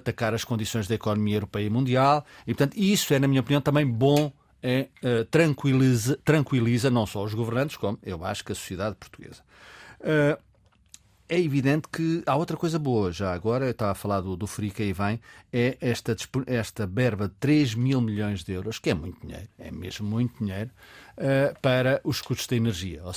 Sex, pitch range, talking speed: male, 105-140 Hz, 195 wpm